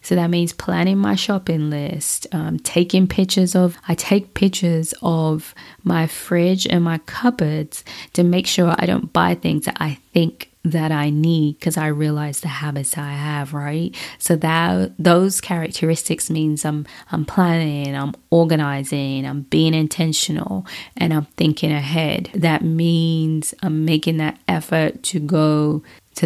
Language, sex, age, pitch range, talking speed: English, female, 20-39, 150-170 Hz, 155 wpm